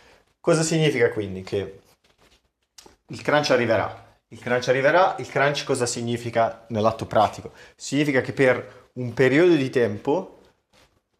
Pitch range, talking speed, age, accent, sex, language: 110-135 Hz, 125 wpm, 30-49, native, male, Italian